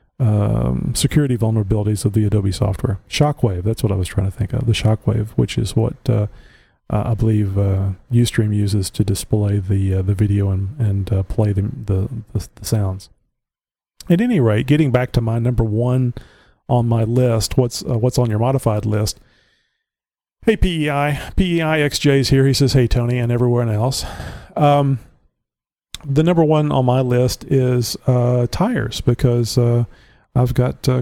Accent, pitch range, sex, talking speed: American, 105-130 Hz, male, 170 wpm